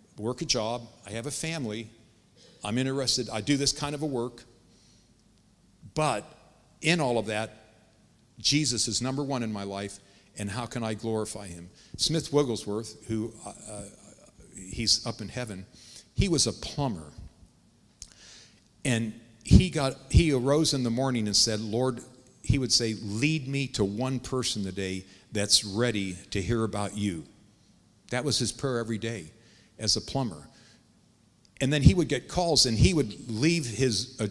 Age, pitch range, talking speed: 50-69, 105-125 Hz, 160 wpm